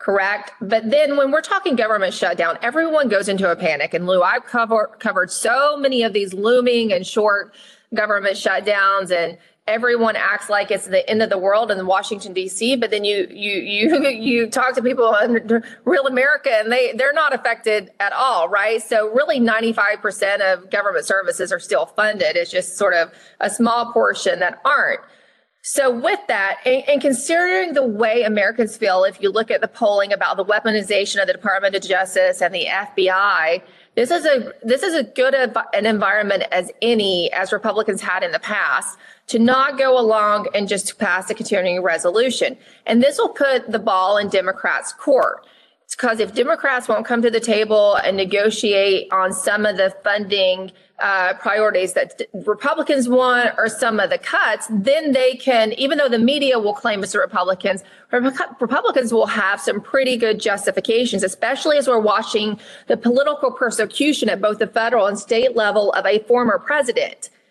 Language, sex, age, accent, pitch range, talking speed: English, female, 30-49, American, 195-255 Hz, 180 wpm